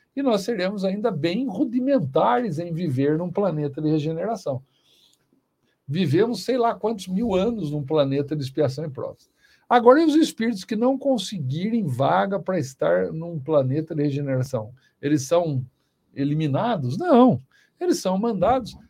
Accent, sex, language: Brazilian, male, Portuguese